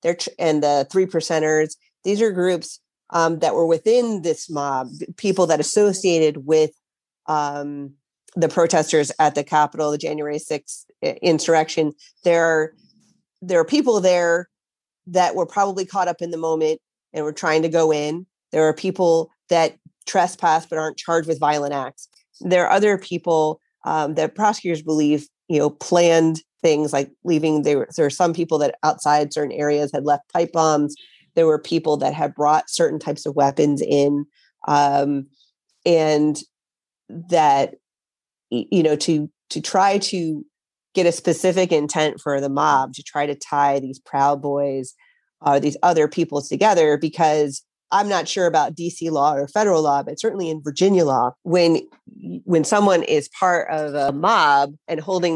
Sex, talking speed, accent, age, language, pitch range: female, 160 wpm, American, 40-59, English, 150-180 Hz